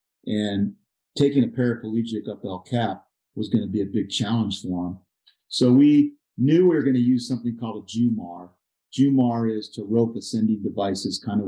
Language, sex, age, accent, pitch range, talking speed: English, male, 50-69, American, 105-125 Hz, 190 wpm